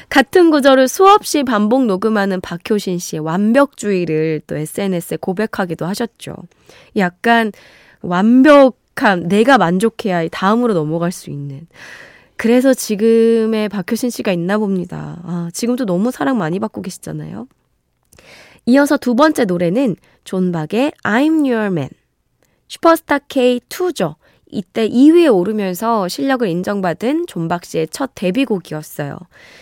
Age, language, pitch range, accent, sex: 20-39, Korean, 175-260 Hz, native, female